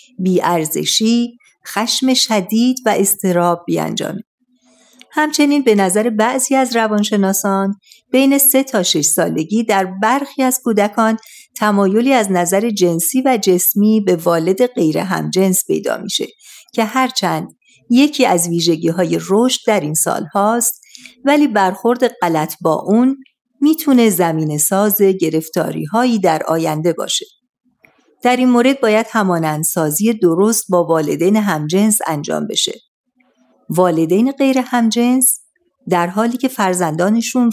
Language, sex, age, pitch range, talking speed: Persian, female, 50-69, 180-250 Hz, 115 wpm